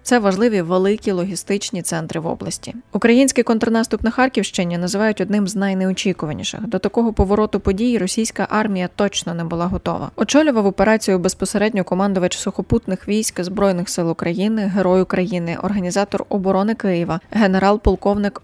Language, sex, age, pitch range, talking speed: Ukrainian, female, 20-39, 185-215 Hz, 130 wpm